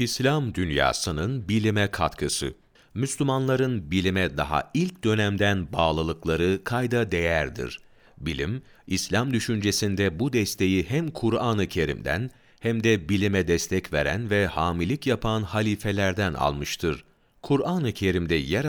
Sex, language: male, Turkish